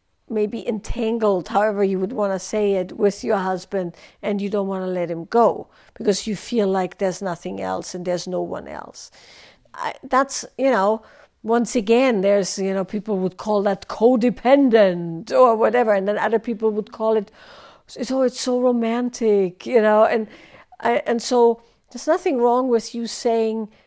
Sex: female